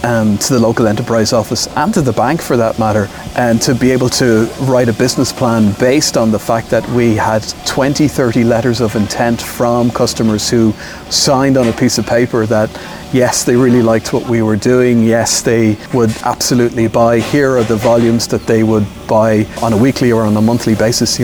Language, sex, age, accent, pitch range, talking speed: English, male, 30-49, Irish, 110-120 Hz, 205 wpm